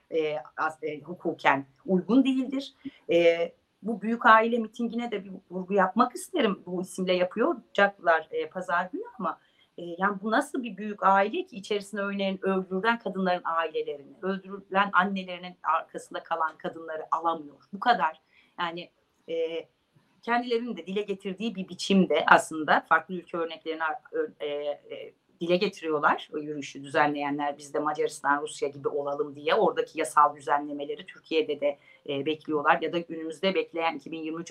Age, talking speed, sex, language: 40-59, 145 wpm, female, Turkish